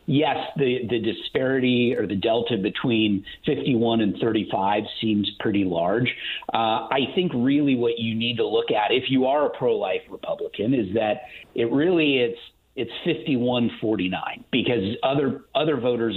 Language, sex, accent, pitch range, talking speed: English, male, American, 110-145 Hz, 155 wpm